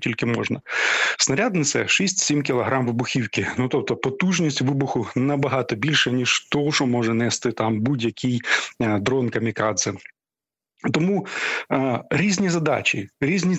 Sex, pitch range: male, 120-145 Hz